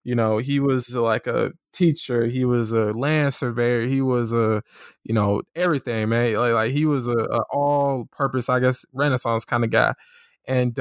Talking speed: 190 wpm